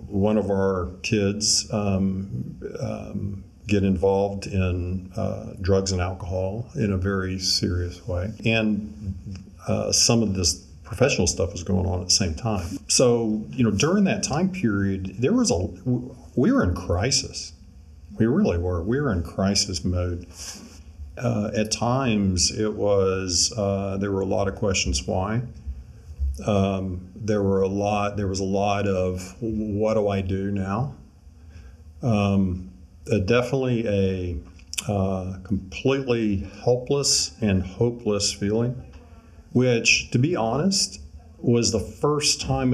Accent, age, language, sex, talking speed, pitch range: American, 50-69, English, male, 140 wpm, 90-110 Hz